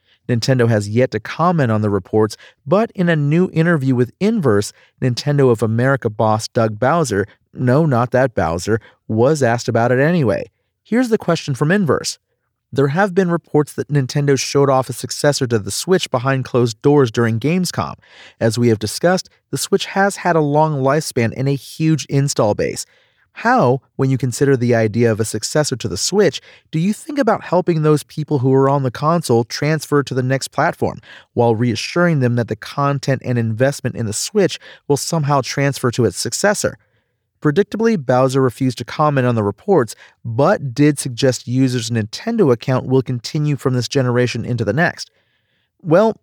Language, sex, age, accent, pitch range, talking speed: English, male, 40-59, American, 115-150 Hz, 175 wpm